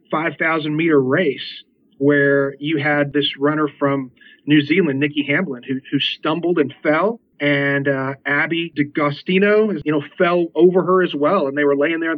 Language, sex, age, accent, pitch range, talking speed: English, male, 40-59, American, 145-175 Hz, 175 wpm